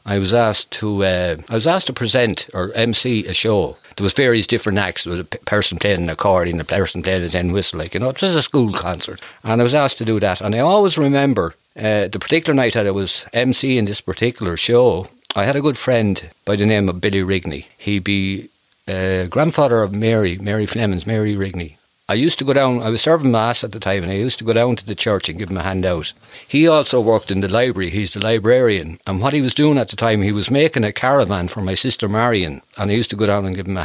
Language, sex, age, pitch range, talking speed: English, male, 60-79, 95-120 Hz, 260 wpm